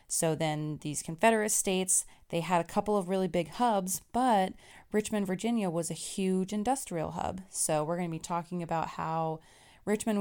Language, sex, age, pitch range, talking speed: English, female, 20-39, 170-200 Hz, 175 wpm